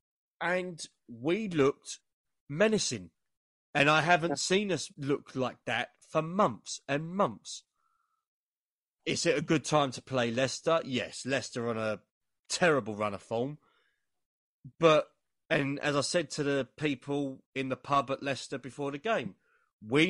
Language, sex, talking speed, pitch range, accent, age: English, male, 145 wpm, 115-160 Hz, British, 30-49